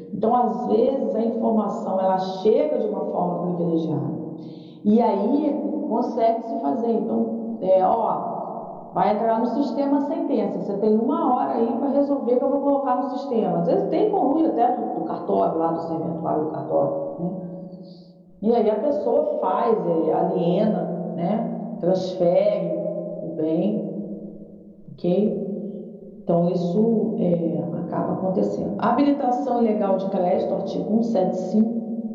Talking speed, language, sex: 140 wpm, Portuguese, female